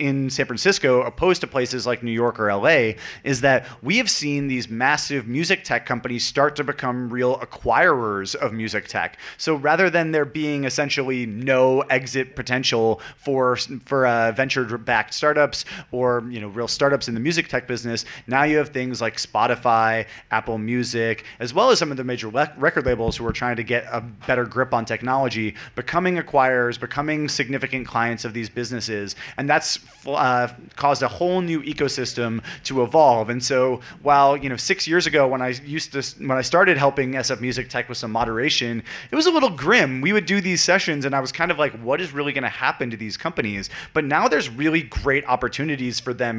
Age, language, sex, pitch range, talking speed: 30-49, English, male, 120-145 Hz, 200 wpm